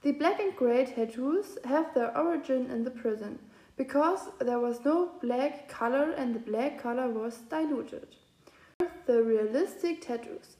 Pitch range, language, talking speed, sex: 240-320 Hz, English, 155 wpm, female